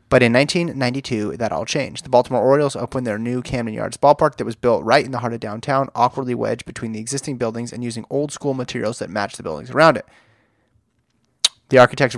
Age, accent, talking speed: 30-49, American, 205 wpm